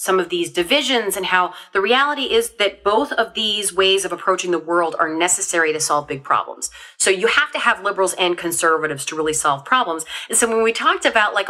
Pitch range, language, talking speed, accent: 175-245 Hz, English, 225 wpm, American